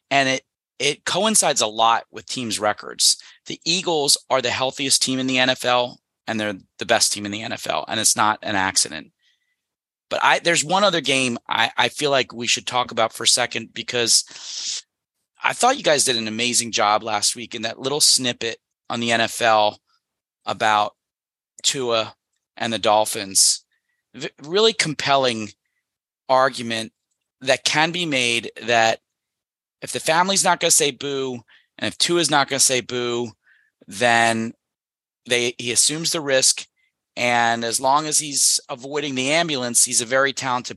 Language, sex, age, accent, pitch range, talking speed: English, male, 30-49, American, 115-145 Hz, 170 wpm